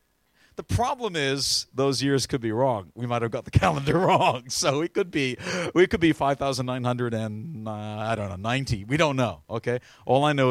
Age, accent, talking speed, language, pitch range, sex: 40-59, American, 205 wpm, English, 120-160 Hz, male